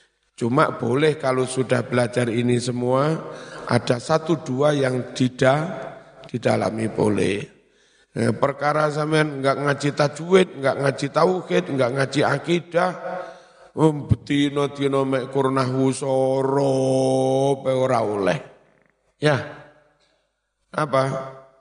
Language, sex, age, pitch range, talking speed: Indonesian, male, 50-69, 130-150 Hz, 90 wpm